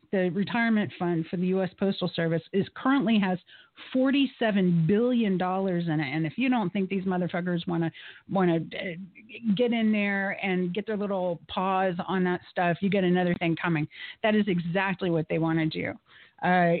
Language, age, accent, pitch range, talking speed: English, 40-59, American, 175-210 Hz, 180 wpm